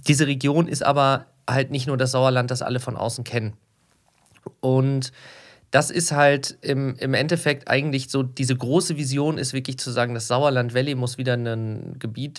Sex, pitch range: male, 120-140 Hz